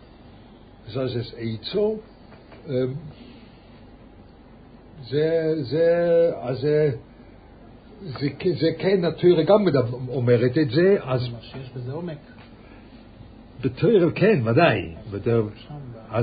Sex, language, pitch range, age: male, English, 115-145 Hz, 60-79